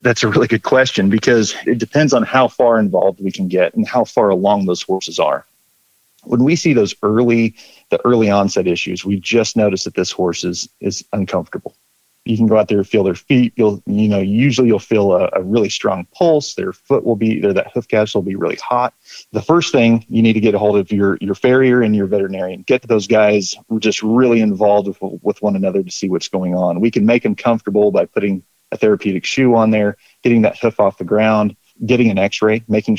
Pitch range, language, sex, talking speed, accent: 100-120 Hz, English, male, 235 wpm, American